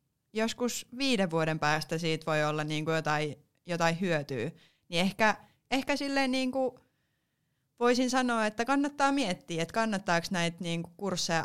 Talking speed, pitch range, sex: 150 wpm, 155-185 Hz, female